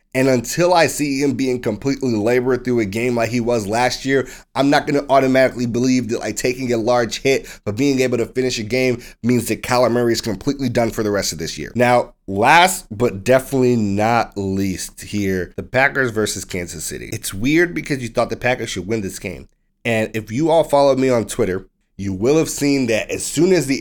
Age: 30-49